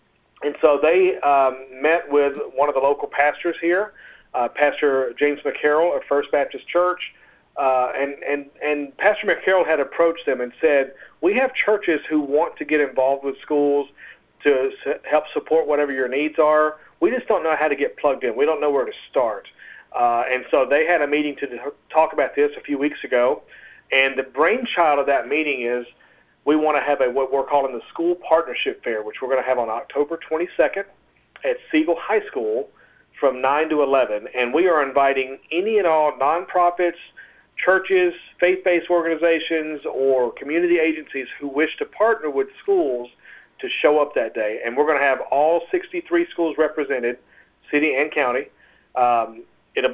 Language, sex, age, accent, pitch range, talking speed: English, male, 40-59, American, 140-220 Hz, 180 wpm